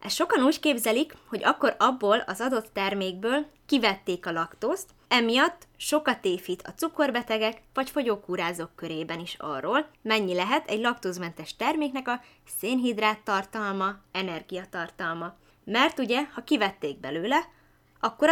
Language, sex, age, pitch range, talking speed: Hungarian, female, 20-39, 180-270 Hz, 125 wpm